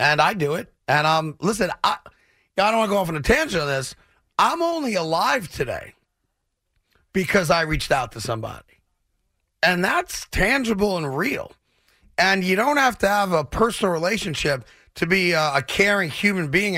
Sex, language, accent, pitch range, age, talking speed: male, English, American, 160-200 Hz, 40-59, 180 wpm